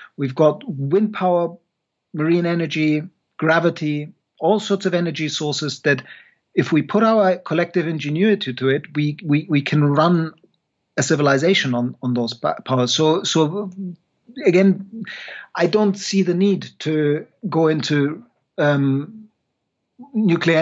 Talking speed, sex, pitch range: 130 wpm, male, 145-180 Hz